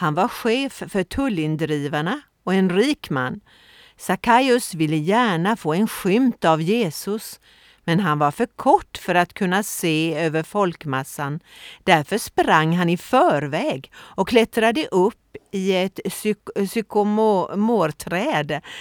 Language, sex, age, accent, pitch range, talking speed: Swedish, female, 40-59, native, 170-230 Hz, 125 wpm